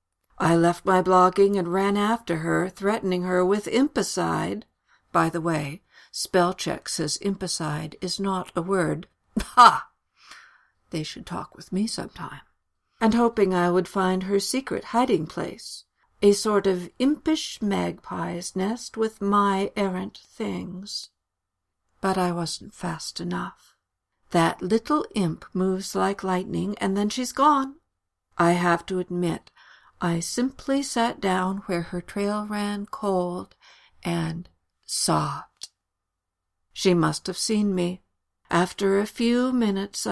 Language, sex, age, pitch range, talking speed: English, female, 60-79, 170-205 Hz, 125 wpm